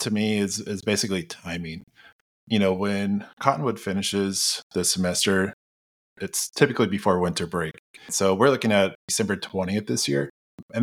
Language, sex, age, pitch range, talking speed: English, male, 20-39, 95-120 Hz, 150 wpm